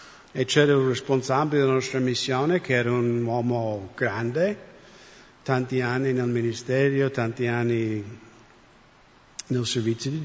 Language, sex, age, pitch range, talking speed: English, male, 50-69, 125-155 Hz, 125 wpm